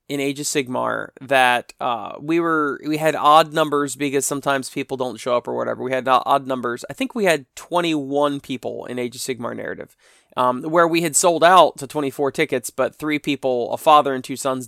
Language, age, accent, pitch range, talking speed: English, 20-39, American, 130-160 Hz, 215 wpm